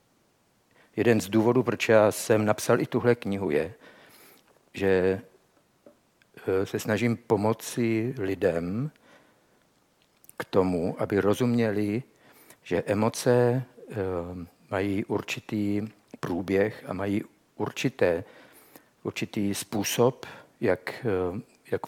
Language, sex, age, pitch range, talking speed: Czech, male, 50-69, 95-115 Hz, 90 wpm